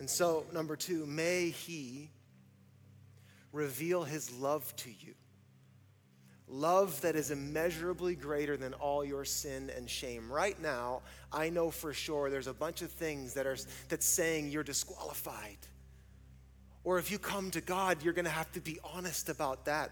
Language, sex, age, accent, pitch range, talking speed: English, male, 30-49, American, 145-185 Hz, 165 wpm